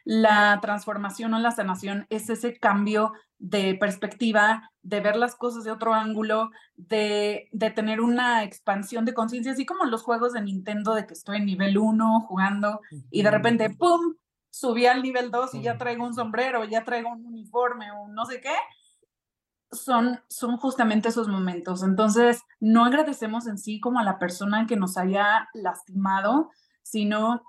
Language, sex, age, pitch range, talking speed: Spanish, female, 30-49, 200-235 Hz, 170 wpm